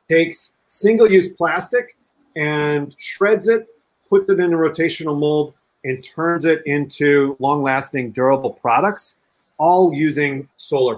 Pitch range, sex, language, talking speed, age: 125-170 Hz, male, English, 130 wpm, 40-59